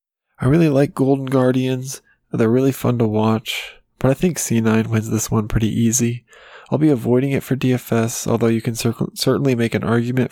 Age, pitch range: 20-39, 110-130 Hz